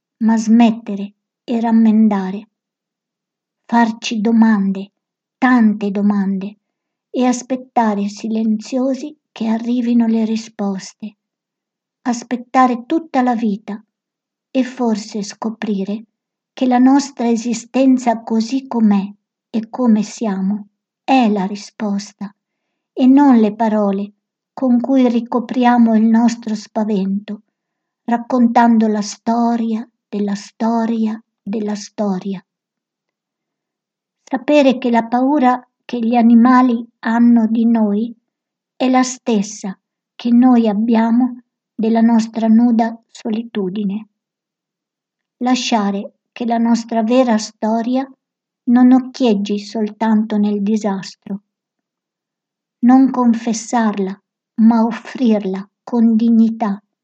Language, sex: Italian, male